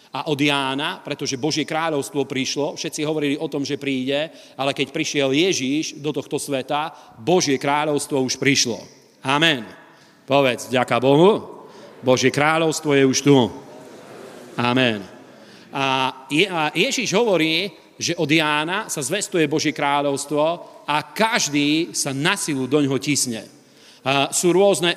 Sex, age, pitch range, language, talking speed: male, 40-59, 140-160 Hz, Slovak, 130 wpm